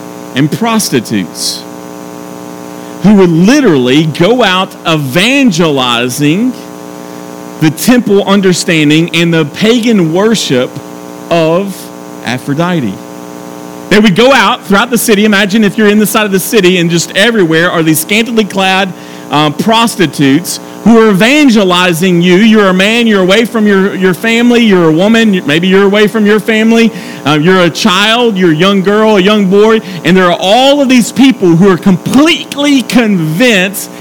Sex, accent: male, American